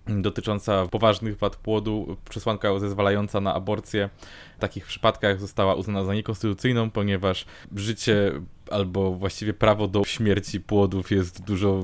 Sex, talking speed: male, 125 wpm